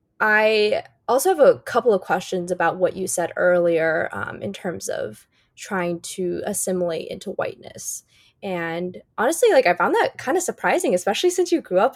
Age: 20-39